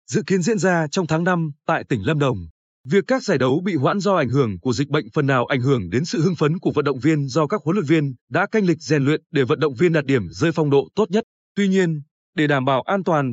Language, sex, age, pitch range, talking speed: Vietnamese, male, 20-39, 145-195 Hz, 285 wpm